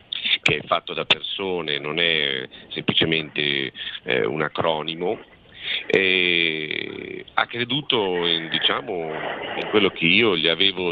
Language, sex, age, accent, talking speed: Italian, male, 50-69, native, 120 wpm